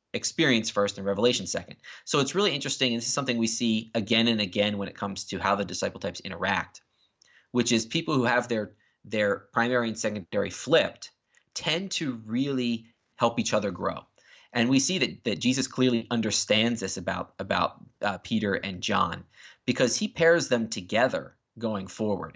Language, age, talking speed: English, 30-49, 180 wpm